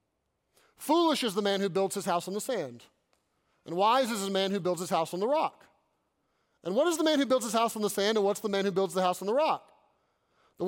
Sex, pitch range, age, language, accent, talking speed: male, 200-255 Hz, 30-49, English, American, 270 wpm